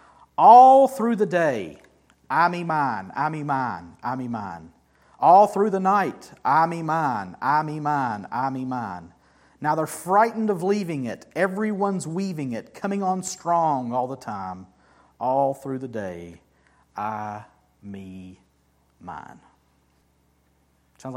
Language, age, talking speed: English, 40-59, 140 wpm